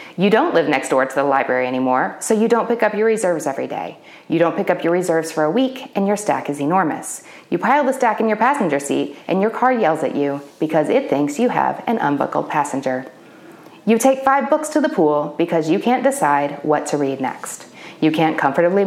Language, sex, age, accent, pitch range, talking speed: English, female, 30-49, American, 150-235 Hz, 230 wpm